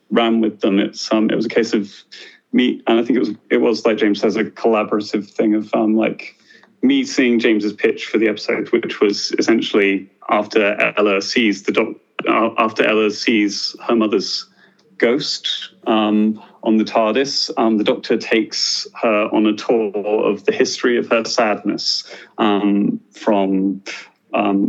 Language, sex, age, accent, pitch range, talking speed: English, male, 30-49, British, 105-115 Hz, 170 wpm